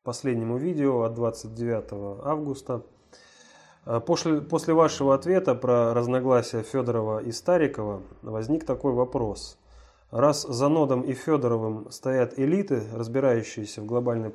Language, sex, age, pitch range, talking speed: Russian, male, 20-39, 115-140 Hz, 110 wpm